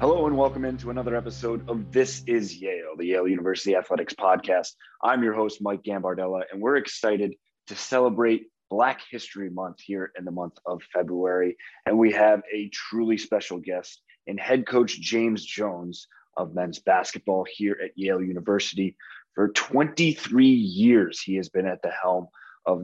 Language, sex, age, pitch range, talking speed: English, male, 30-49, 95-120 Hz, 165 wpm